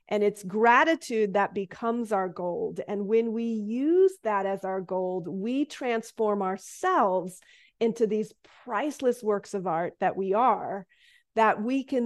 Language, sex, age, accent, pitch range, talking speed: English, female, 30-49, American, 200-255 Hz, 150 wpm